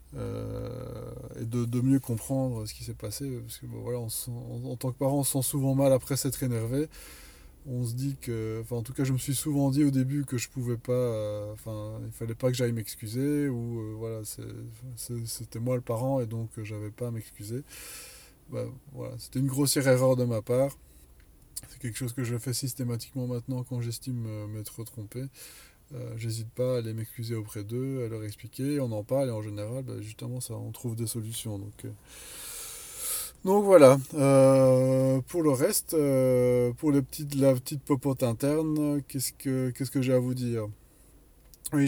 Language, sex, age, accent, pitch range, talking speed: French, male, 20-39, French, 115-135 Hz, 200 wpm